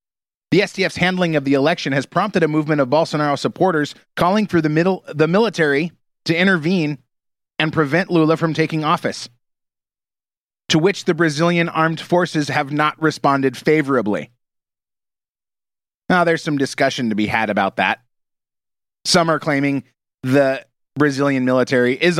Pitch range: 140-175 Hz